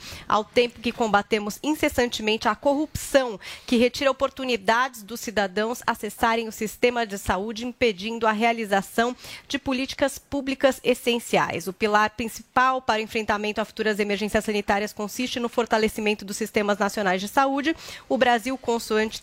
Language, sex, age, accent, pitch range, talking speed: Portuguese, female, 30-49, Brazilian, 220-260 Hz, 140 wpm